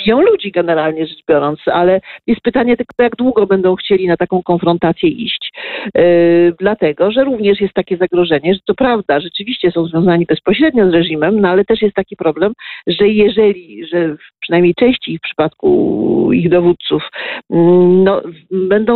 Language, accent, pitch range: Polish, native, 175-235 Hz